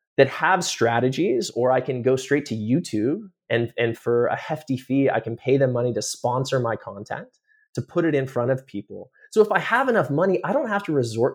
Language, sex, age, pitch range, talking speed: English, male, 20-39, 115-155 Hz, 225 wpm